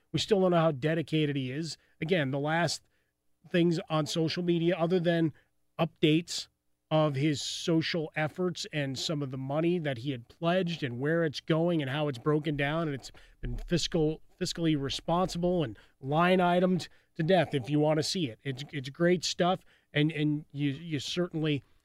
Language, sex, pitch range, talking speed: English, male, 140-165 Hz, 180 wpm